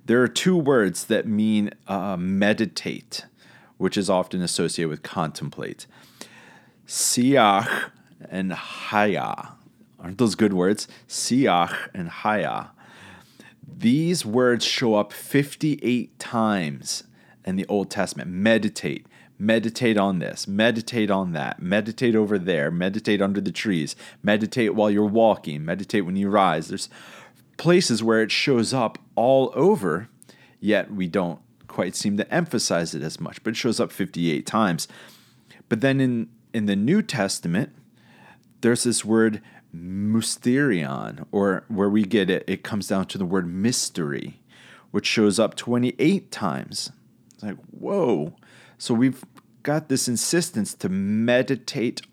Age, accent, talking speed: 40-59, American, 135 wpm